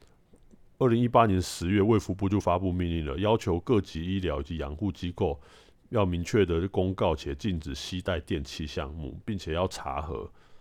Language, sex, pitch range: Chinese, male, 80-105 Hz